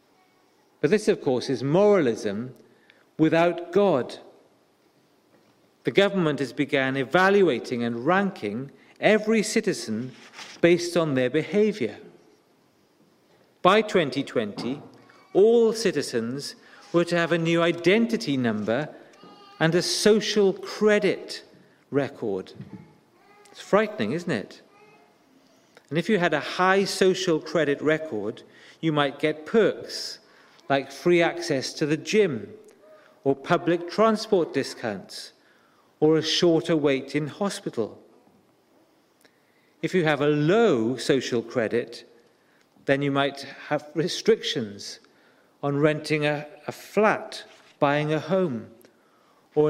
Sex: male